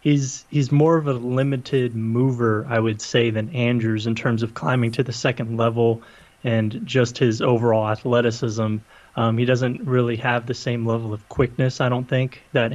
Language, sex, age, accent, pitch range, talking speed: English, male, 20-39, American, 115-130 Hz, 185 wpm